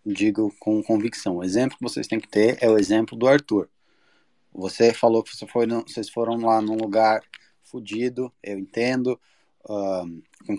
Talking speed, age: 155 wpm, 20-39